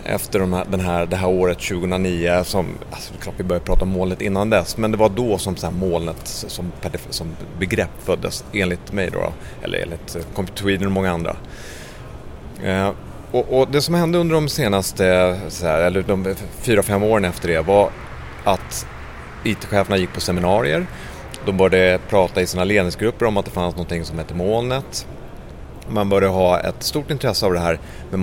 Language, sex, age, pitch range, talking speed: Swedish, male, 30-49, 85-100 Hz, 170 wpm